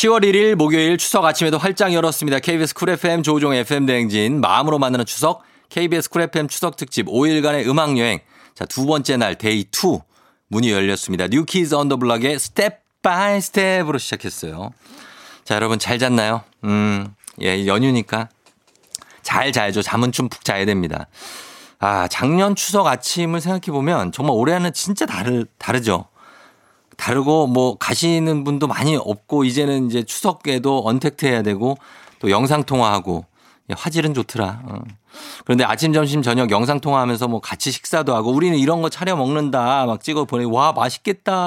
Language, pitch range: Korean, 120-160 Hz